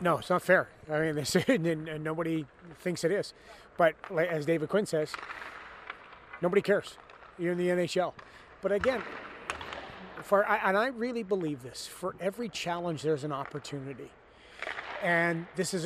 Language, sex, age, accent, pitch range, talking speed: English, male, 30-49, American, 155-190 Hz, 140 wpm